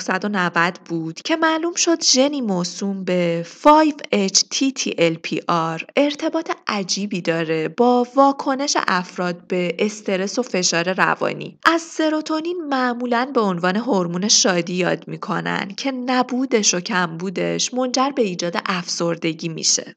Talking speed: 115 wpm